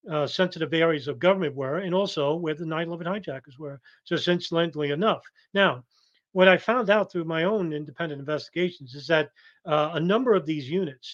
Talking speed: 185 wpm